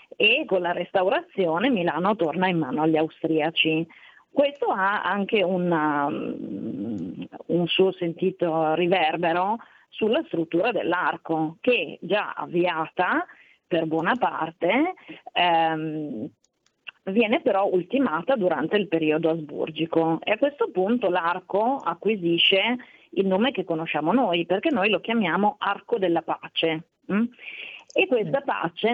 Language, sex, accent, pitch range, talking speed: Italian, female, native, 160-200 Hz, 115 wpm